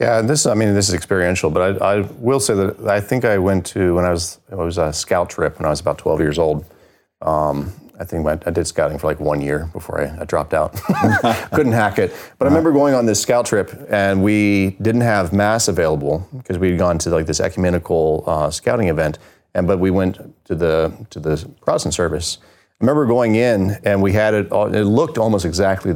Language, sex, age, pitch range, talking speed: English, male, 30-49, 85-110 Hz, 220 wpm